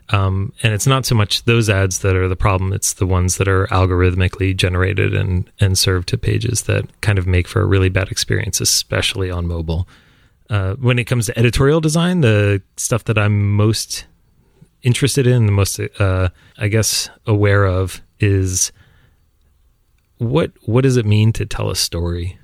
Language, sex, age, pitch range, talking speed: English, male, 30-49, 95-115 Hz, 175 wpm